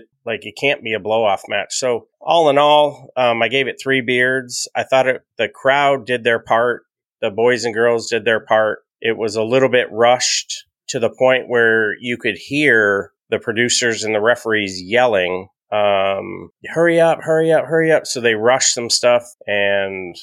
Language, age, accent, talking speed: English, 30-49, American, 195 wpm